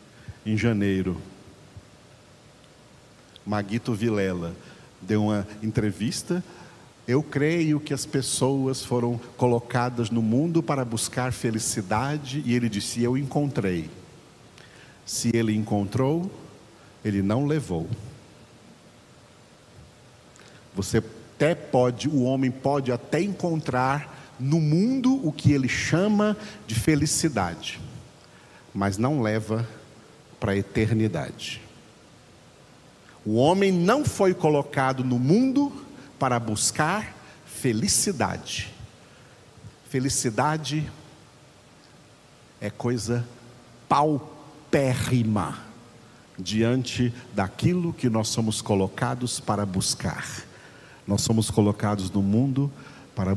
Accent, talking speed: Brazilian, 90 wpm